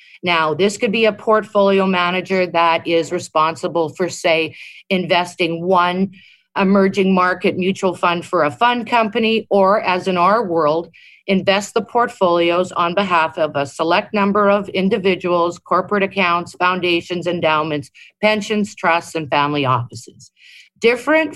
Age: 50-69